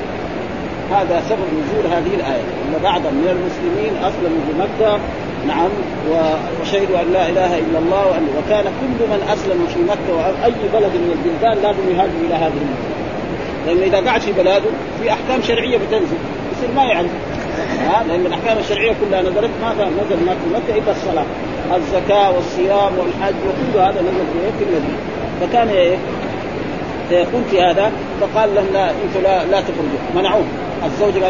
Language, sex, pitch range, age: Arabic, male, 175-215 Hz, 40-59